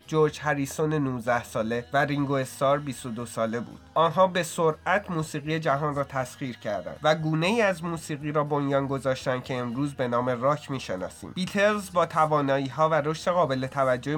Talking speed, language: 165 wpm, Persian